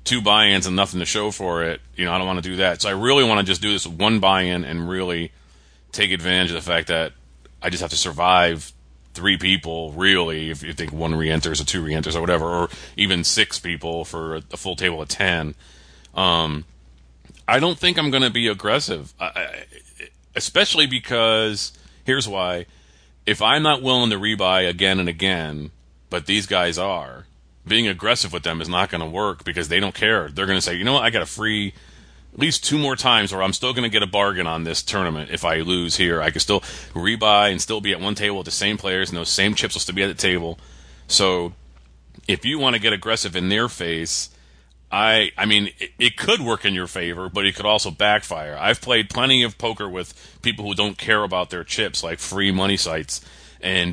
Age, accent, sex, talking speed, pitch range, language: 30-49, American, male, 220 wpm, 80-105 Hz, English